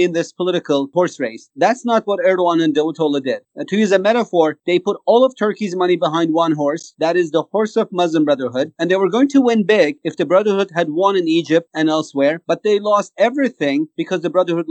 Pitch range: 165-210 Hz